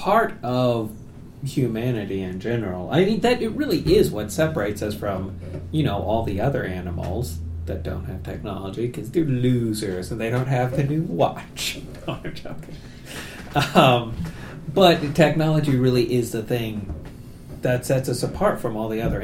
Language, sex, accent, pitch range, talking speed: English, male, American, 95-135 Hz, 165 wpm